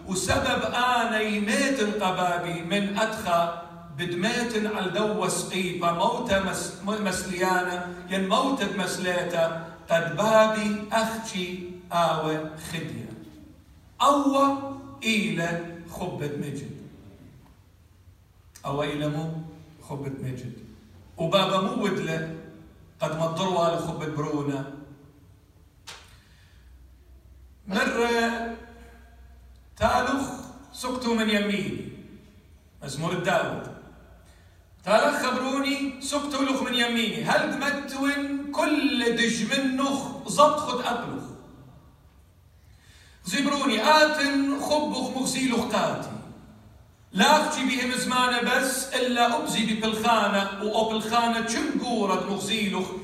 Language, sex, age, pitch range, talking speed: English, male, 50-69, 155-235 Hz, 80 wpm